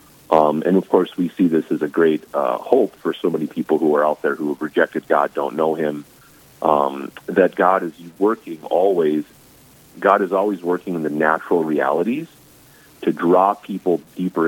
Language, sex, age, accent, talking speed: English, male, 40-59, American, 185 wpm